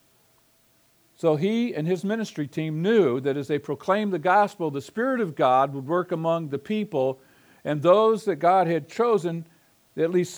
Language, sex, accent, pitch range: English, male, American, 140-185 Hz